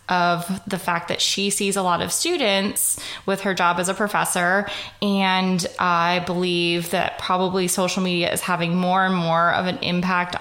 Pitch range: 175-195 Hz